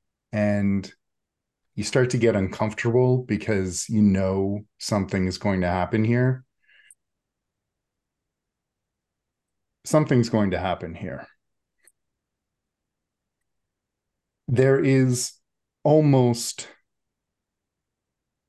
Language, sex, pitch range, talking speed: English, male, 95-120 Hz, 75 wpm